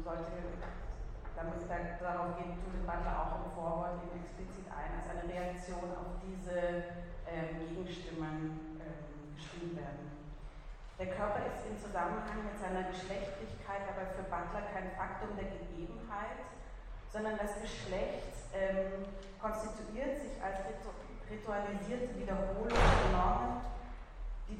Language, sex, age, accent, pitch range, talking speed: German, female, 30-49, German, 175-205 Hz, 125 wpm